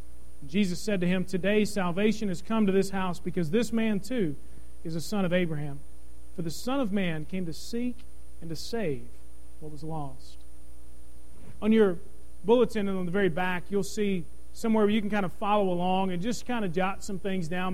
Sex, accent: male, American